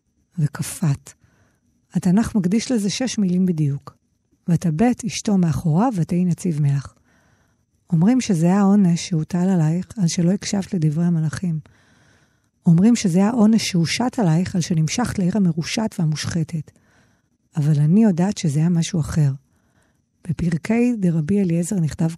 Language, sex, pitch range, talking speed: Hebrew, female, 160-210 Hz, 120 wpm